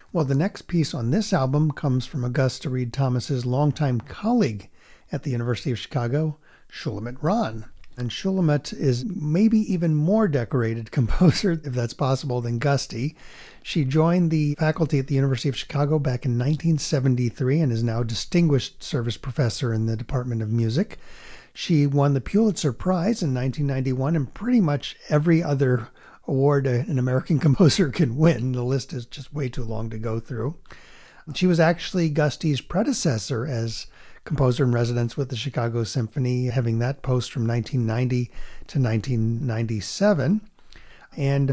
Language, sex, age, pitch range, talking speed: English, male, 50-69, 125-155 Hz, 155 wpm